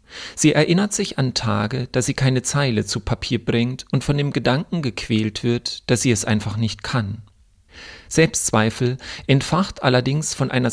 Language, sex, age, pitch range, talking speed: German, male, 40-59, 110-140 Hz, 160 wpm